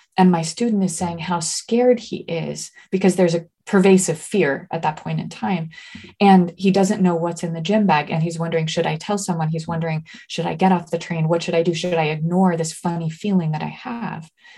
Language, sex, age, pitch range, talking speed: English, female, 20-39, 165-200 Hz, 230 wpm